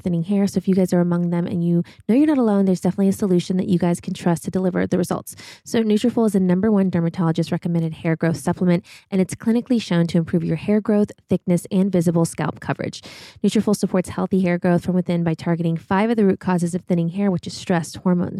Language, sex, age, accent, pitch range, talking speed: English, female, 20-39, American, 175-210 Hz, 240 wpm